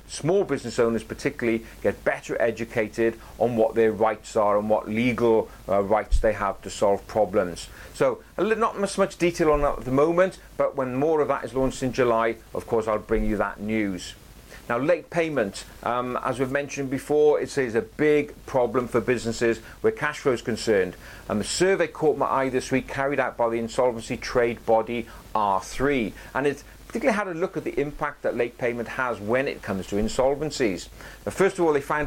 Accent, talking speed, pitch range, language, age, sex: British, 200 wpm, 115-150 Hz, English, 40-59, male